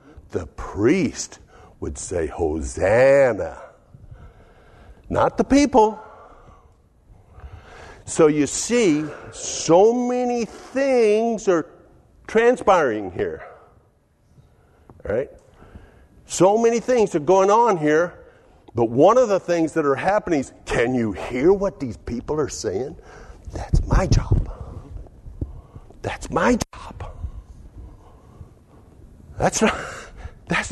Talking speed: 100 wpm